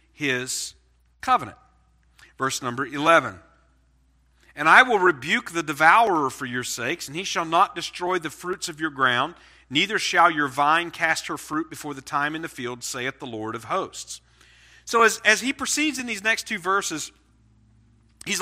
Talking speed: 175 wpm